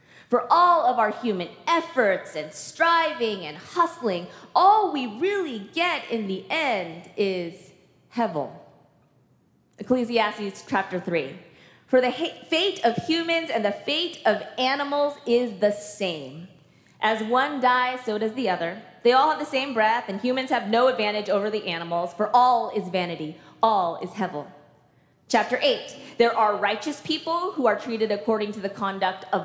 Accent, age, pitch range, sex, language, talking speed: American, 20-39, 200-290 Hz, female, English, 155 wpm